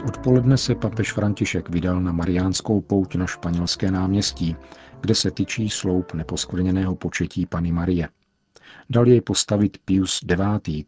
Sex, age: male, 50-69